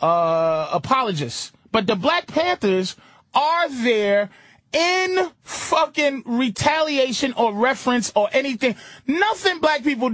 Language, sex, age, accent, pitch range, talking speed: English, male, 20-39, American, 235-370 Hz, 105 wpm